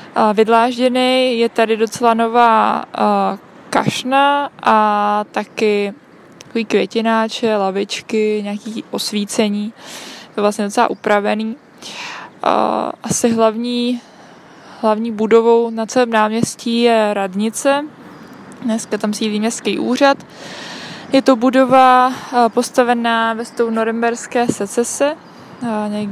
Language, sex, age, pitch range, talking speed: Czech, female, 20-39, 205-230 Hz, 100 wpm